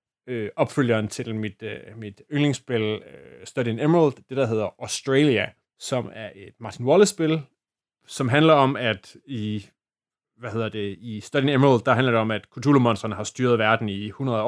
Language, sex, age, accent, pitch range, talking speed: Danish, male, 30-49, native, 115-140 Hz, 160 wpm